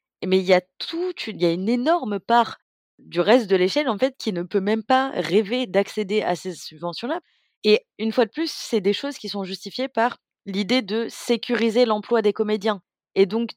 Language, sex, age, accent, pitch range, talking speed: French, female, 20-39, French, 180-225 Hz, 185 wpm